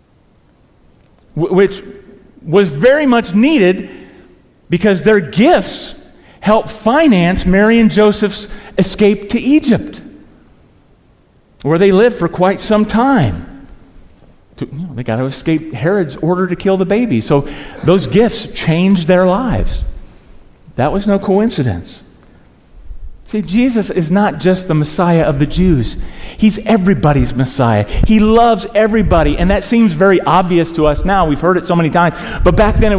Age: 40-59